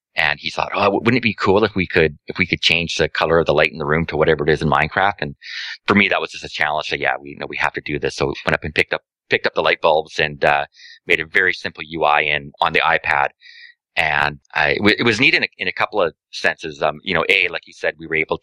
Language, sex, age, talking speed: English, male, 30-49, 300 wpm